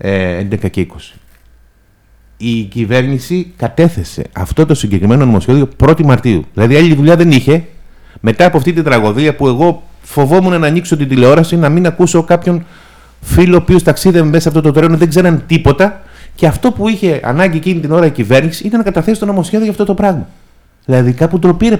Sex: male